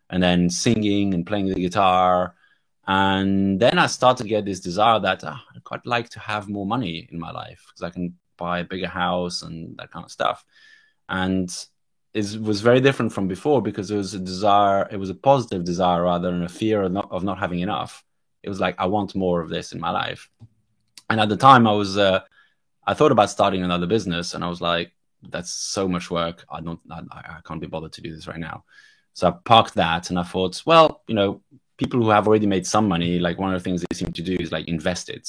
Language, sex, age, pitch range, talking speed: English, male, 20-39, 90-105 Hz, 240 wpm